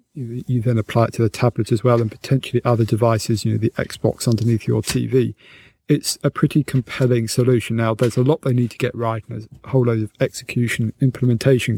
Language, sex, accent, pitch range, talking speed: English, male, British, 115-130 Hz, 215 wpm